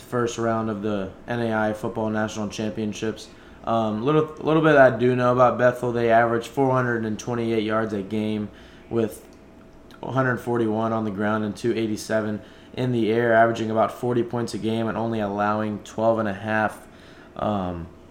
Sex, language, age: male, English, 20-39